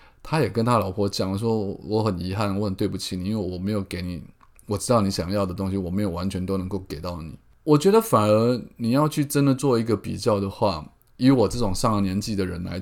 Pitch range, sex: 100-135 Hz, male